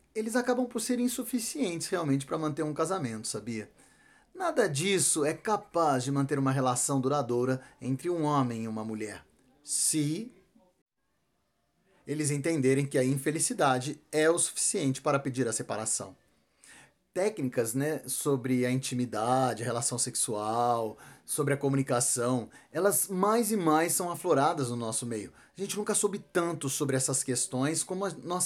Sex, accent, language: male, Brazilian, Portuguese